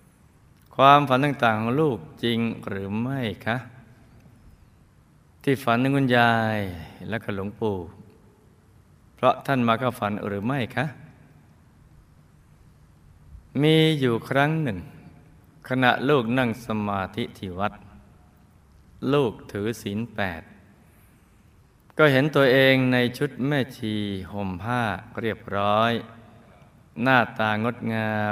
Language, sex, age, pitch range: Thai, male, 20-39, 100-130 Hz